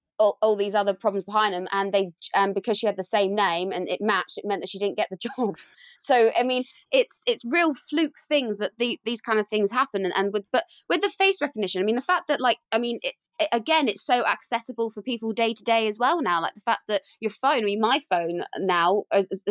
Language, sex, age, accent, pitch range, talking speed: English, female, 20-39, British, 195-235 Hz, 260 wpm